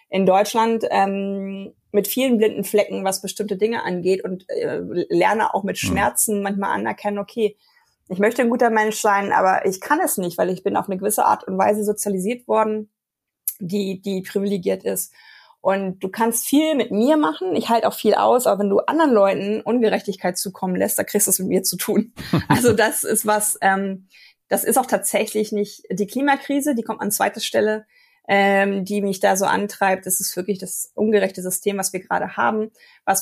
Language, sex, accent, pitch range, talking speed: German, female, German, 195-220 Hz, 195 wpm